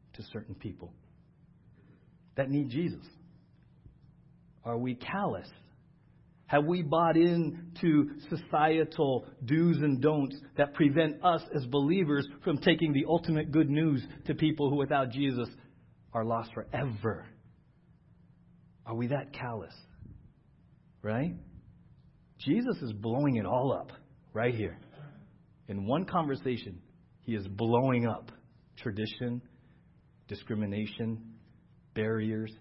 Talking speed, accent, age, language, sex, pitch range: 110 wpm, American, 40-59, English, male, 115-155 Hz